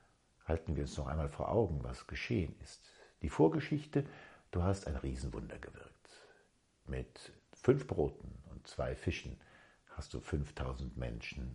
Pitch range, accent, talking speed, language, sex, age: 70-110 Hz, German, 140 wpm, German, male, 60-79